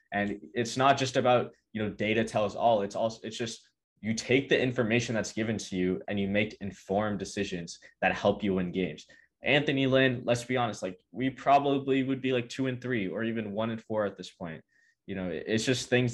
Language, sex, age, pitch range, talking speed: English, male, 20-39, 100-120 Hz, 220 wpm